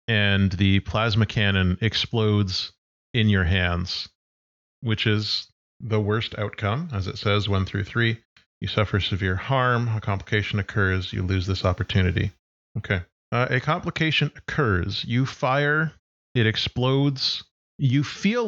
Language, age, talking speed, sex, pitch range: English, 30-49, 135 wpm, male, 95-120 Hz